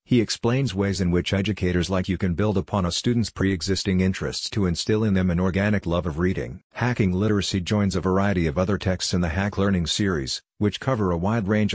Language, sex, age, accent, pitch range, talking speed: English, male, 50-69, American, 90-105 Hz, 215 wpm